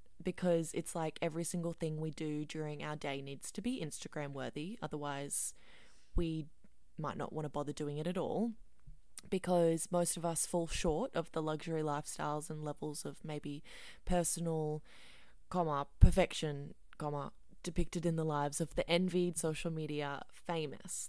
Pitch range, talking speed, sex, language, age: 150-185 Hz, 155 wpm, female, English, 20-39